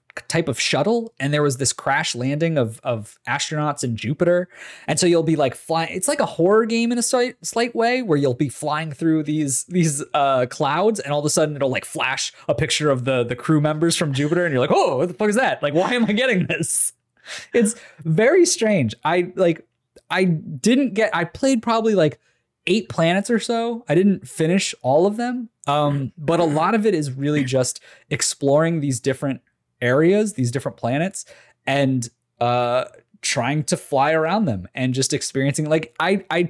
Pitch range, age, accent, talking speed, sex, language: 135-210 Hz, 20-39, American, 200 wpm, male, English